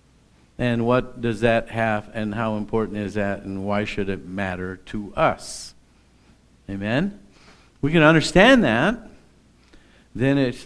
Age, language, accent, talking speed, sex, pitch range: 50-69, English, American, 135 wpm, male, 100-130 Hz